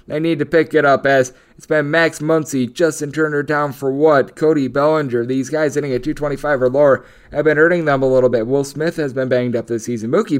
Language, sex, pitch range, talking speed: English, male, 125-145 Hz, 235 wpm